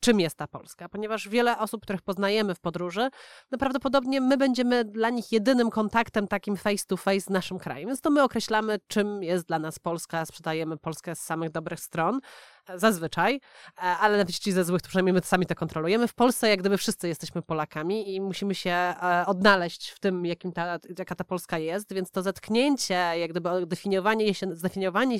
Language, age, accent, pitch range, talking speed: Polish, 30-49, native, 175-225 Hz, 190 wpm